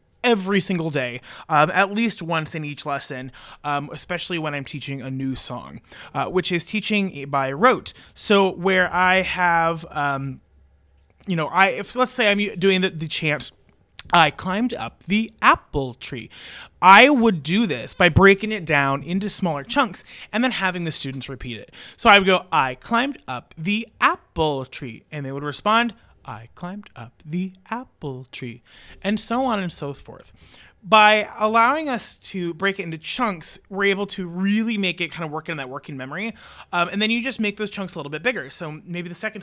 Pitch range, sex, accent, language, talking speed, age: 145-205 Hz, male, American, English, 195 wpm, 30-49